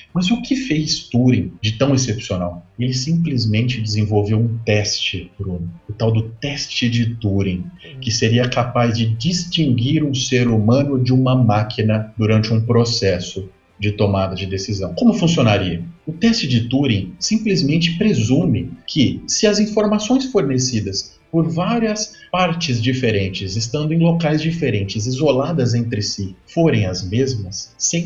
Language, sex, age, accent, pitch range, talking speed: Portuguese, male, 30-49, Brazilian, 105-135 Hz, 140 wpm